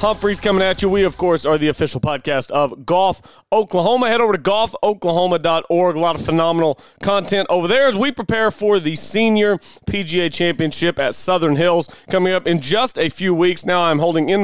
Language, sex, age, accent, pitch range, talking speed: English, male, 30-49, American, 155-205 Hz, 195 wpm